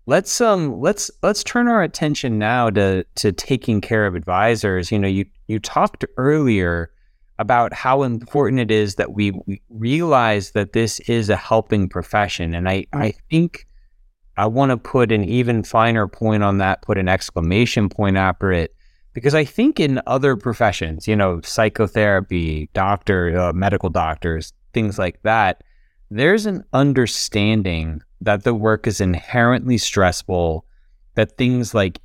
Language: English